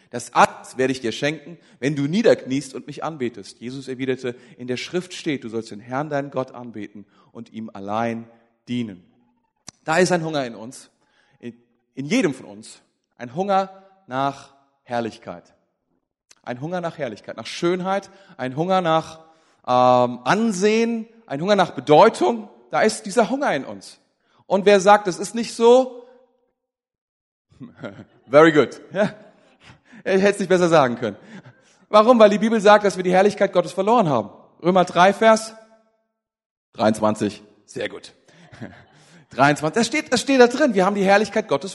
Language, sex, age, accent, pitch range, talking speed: German, male, 40-59, German, 130-220 Hz, 155 wpm